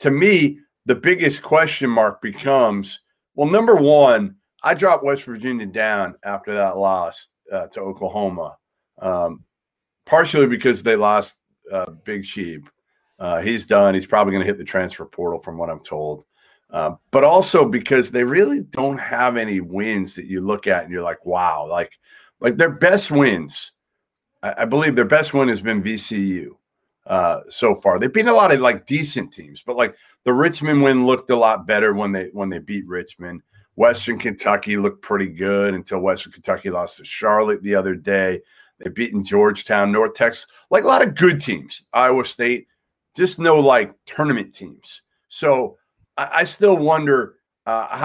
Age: 40-59